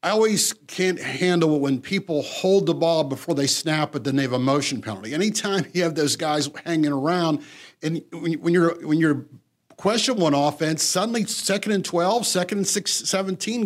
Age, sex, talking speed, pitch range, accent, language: 50-69, male, 190 wpm, 160-210 Hz, American, English